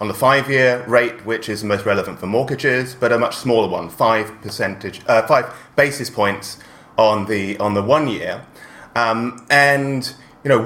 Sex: male